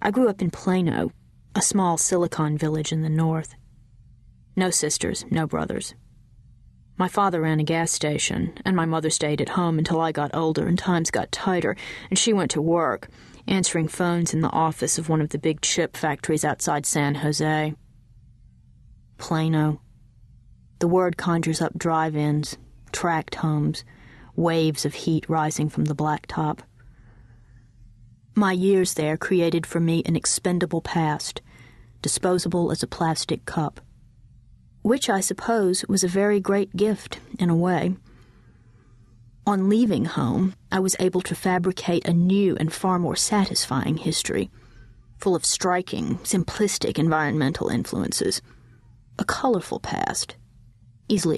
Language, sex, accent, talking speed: English, female, American, 140 wpm